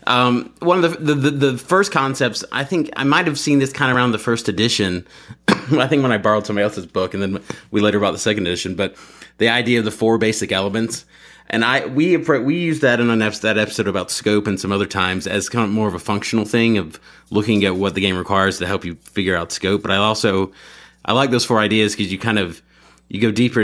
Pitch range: 95-115 Hz